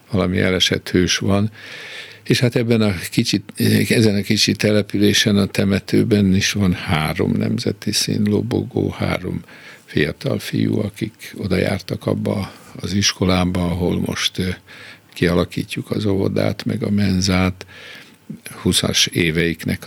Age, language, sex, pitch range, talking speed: 60-79, Hungarian, male, 90-105 Hz, 120 wpm